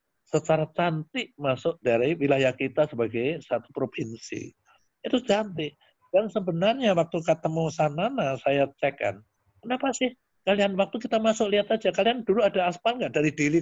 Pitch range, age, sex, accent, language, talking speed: 140-205 Hz, 50-69, male, Indonesian, English, 150 wpm